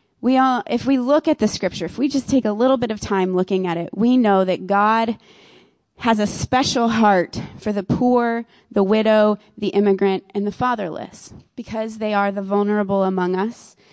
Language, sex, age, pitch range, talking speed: English, female, 20-39, 195-240 Hz, 195 wpm